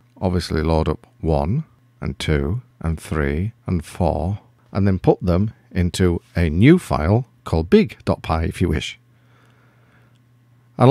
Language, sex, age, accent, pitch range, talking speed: English, male, 50-69, British, 95-125 Hz, 130 wpm